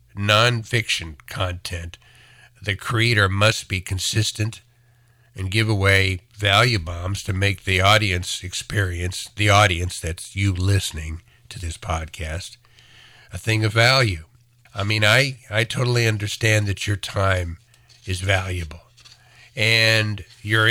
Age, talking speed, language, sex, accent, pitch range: 60-79, 120 wpm, English, male, American, 95-115 Hz